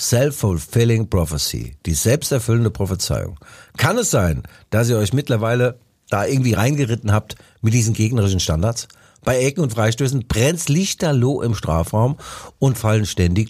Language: German